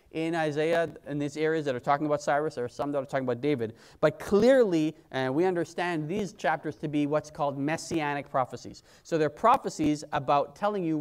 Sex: male